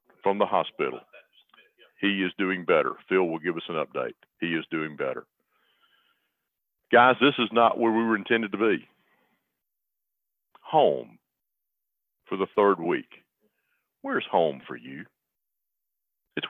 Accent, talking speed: American, 135 wpm